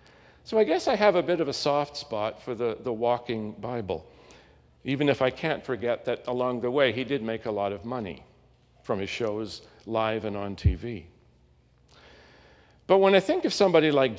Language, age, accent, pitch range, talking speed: English, 50-69, American, 110-145 Hz, 195 wpm